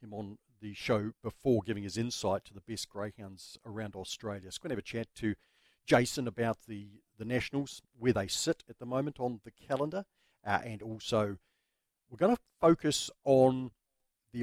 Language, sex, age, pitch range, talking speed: English, male, 50-69, 105-135 Hz, 185 wpm